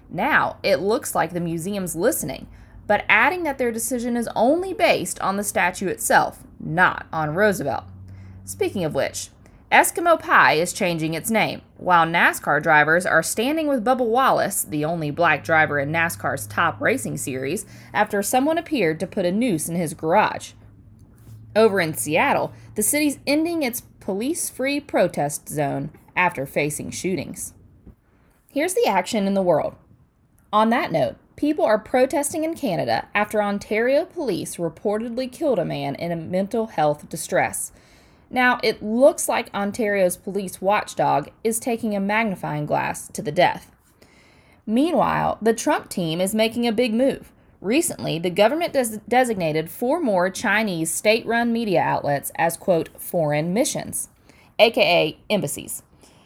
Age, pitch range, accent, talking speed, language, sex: 20-39, 160-255 Hz, American, 145 wpm, English, female